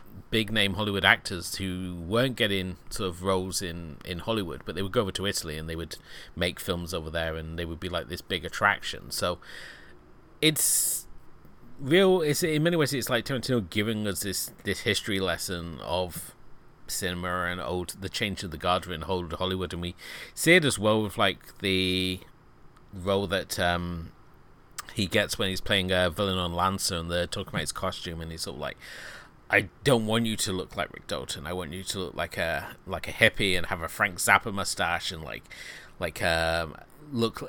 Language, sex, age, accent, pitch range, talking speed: English, male, 30-49, British, 85-105 Hz, 200 wpm